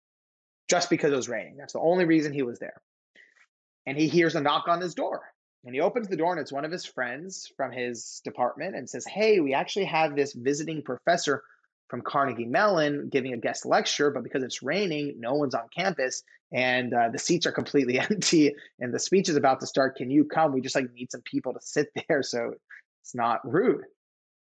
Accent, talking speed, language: American, 215 wpm, English